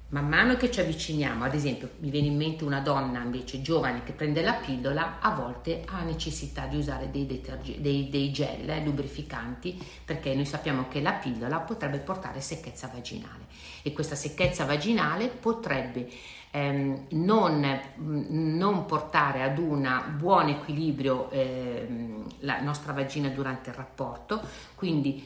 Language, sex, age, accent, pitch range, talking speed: Italian, female, 50-69, native, 135-170 Hz, 145 wpm